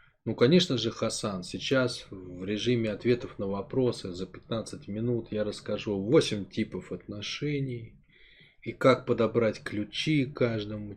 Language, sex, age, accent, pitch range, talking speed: Russian, male, 20-39, native, 100-135 Hz, 125 wpm